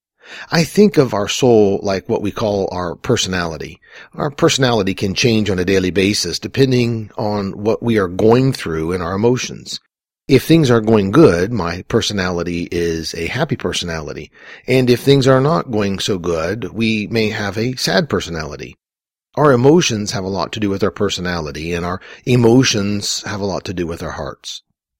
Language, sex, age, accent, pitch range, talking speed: English, male, 40-59, American, 95-125 Hz, 180 wpm